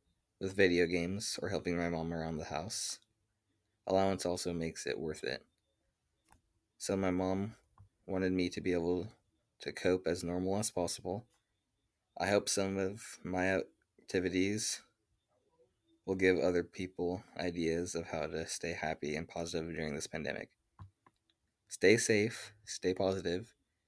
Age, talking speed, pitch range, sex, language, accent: 20-39, 140 wpm, 90-100 Hz, male, English, American